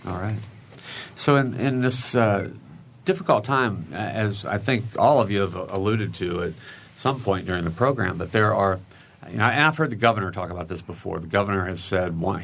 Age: 50-69